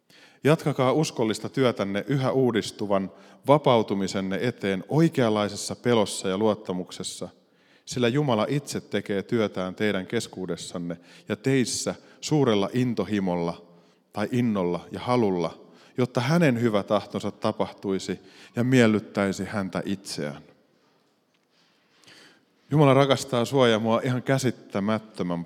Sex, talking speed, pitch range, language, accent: male, 100 wpm, 95-125 Hz, Finnish, native